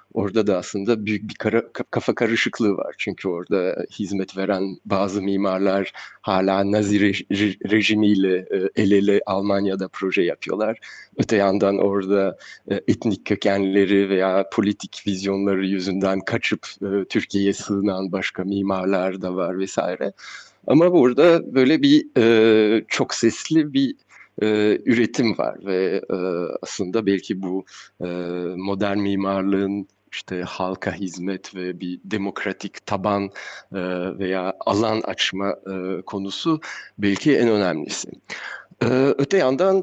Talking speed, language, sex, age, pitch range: 105 wpm, Turkish, male, 30-49, 95-110 Hz